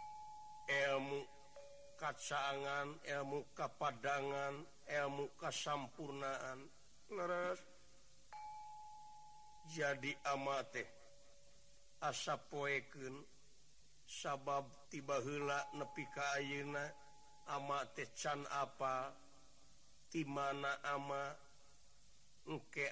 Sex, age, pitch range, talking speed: male, 60-79, 140-175 Hz, 50 wpm